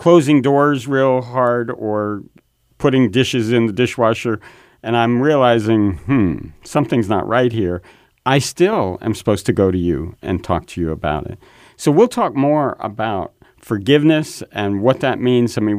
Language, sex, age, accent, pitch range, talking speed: English, male, 50-69, American, 100-130 Hz, 165 wpm